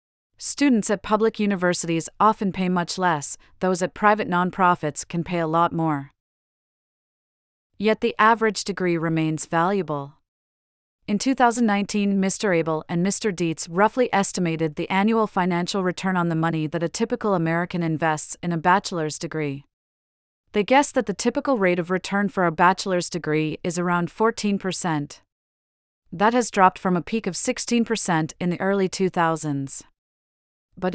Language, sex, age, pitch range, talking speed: English, female, 30-49, 165-200 Hz, 145 wpm